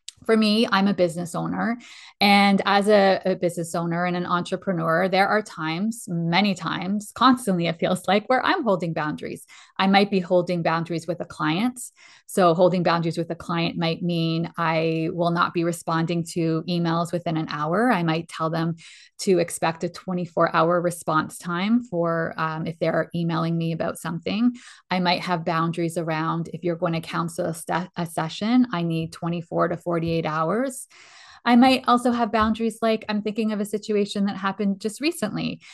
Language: English